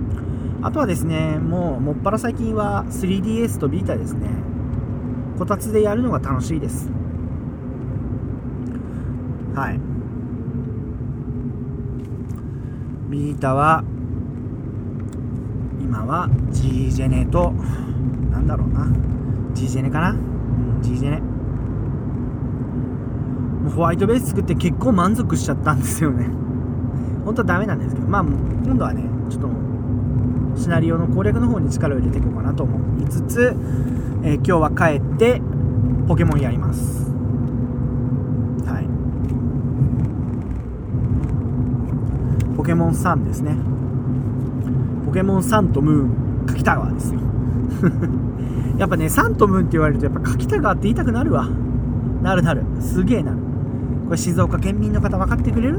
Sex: male